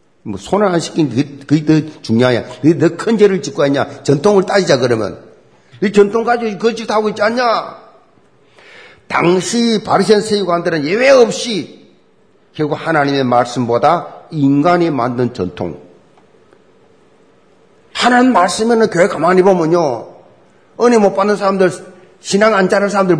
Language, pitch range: Korean, 145-230 Hz